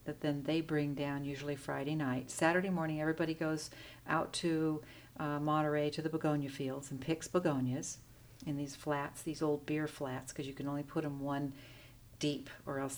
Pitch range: 140-160 Hz